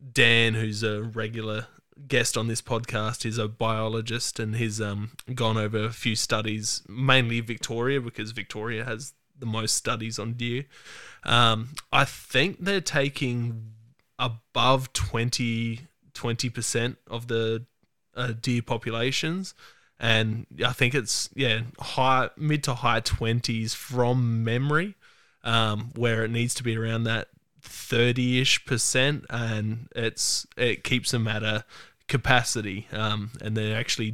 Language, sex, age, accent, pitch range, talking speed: English, male, 20-39, Australian, 115-130 Hz, 135 wpm